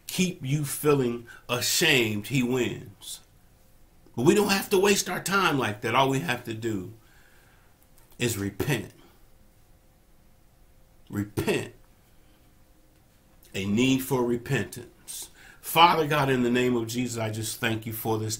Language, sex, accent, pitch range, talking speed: English, male, American, 110-135 Hz, 135 wpm